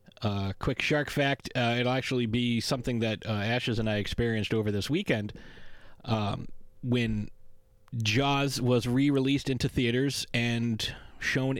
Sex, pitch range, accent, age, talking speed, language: male, 110-140 Hz, American, 30-49, 140 wpm, English